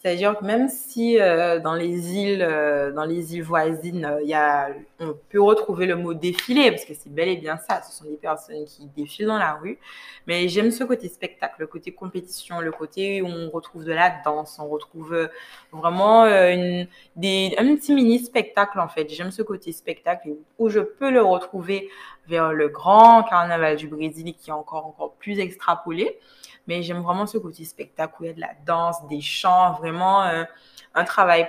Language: French